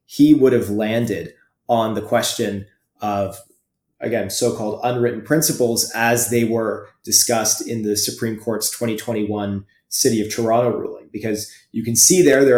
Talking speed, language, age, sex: 150 wpm, English, 30-49, male